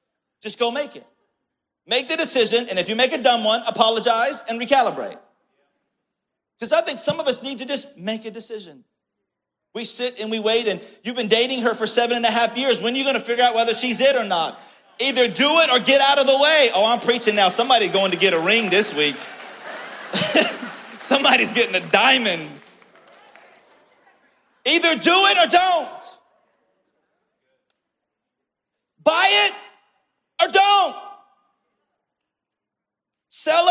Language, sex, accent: English, male, American